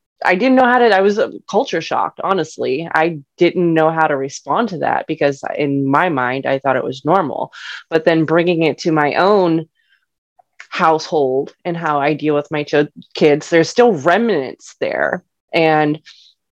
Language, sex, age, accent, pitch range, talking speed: English, female, 20-39, American, 150-185 Hz, 170 wpm